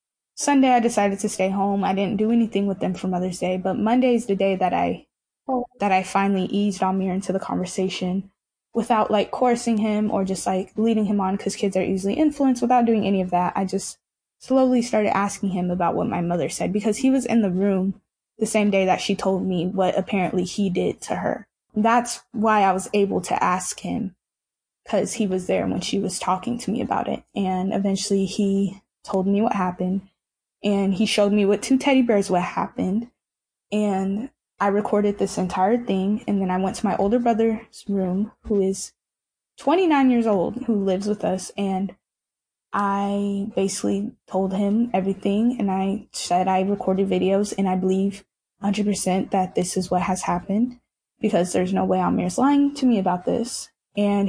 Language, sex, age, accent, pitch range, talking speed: English, female, 10-29, American, 190-225 Hz, 190 wpm